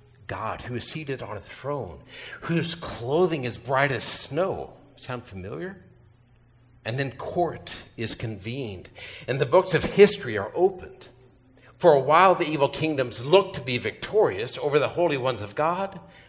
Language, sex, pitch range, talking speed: English, male, 120-160 Hz, 160 wpm